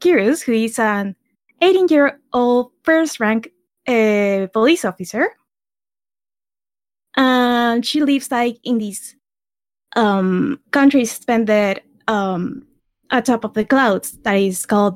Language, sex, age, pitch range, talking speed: English, female, 10-29, 210-265 Hz, 100 wpm